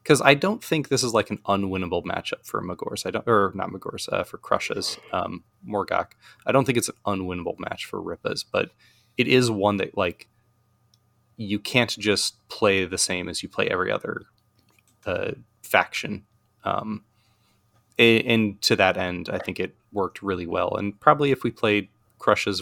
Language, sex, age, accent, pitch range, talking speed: English, male, 20-39, American, 95-110 Hz, 180 wpm